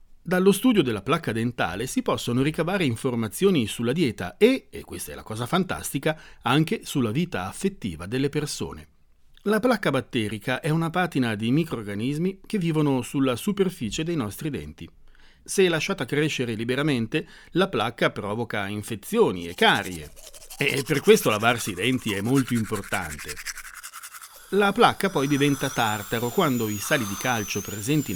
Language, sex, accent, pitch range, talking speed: Italian, male, native, 110-165 Hz, 145 wpm